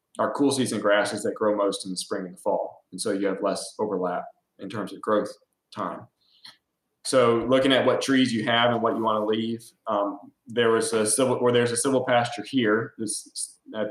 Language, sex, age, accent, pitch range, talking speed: English, male, 20-39, American, 100-120 Hz, 215 wpm